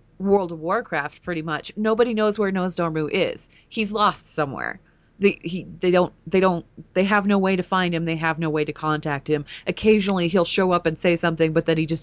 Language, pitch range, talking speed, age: English, 160-195 Hz, 215 wpm, 30-49